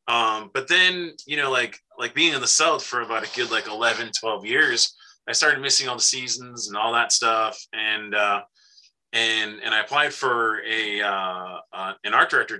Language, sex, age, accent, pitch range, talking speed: English, male, 20-39, American, 100-125 Hz, 200 wpm